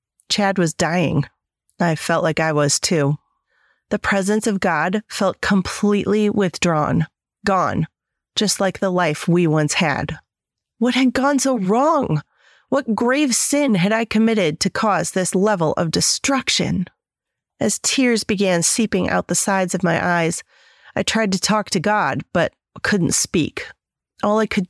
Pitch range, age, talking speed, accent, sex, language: 175-220 Hz, 30-49, 155 wpm, American, female, English